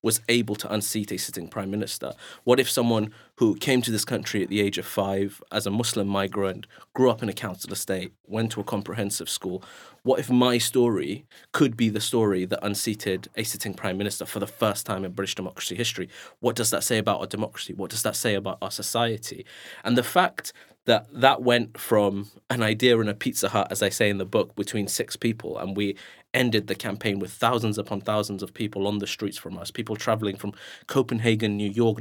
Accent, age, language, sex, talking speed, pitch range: British, 30-49, English, male, 215 wpm, 100-115 Hz